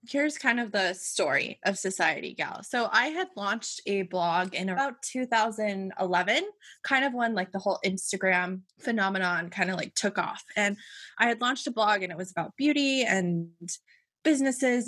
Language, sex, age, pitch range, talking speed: English, female, 20-39, 185-230 Hz, 175 wpm